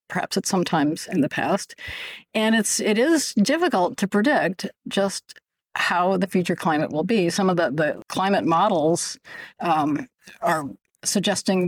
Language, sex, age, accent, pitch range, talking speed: English, female, 50-69, American, 175-220 Hz, 155 wpm